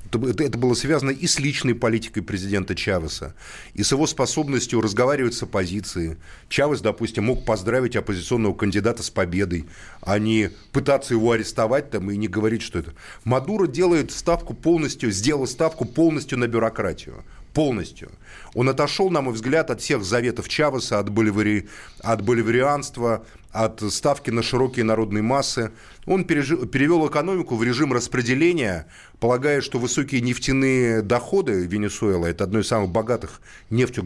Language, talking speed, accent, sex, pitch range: Russian, 140 wpm, native, male, 110-140 Hz